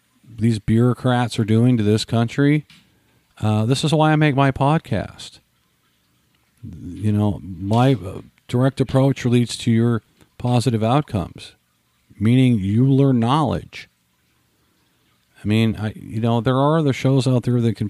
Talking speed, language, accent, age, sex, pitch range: 140 wpm, English, American, 50-69, male, 95-125 Hz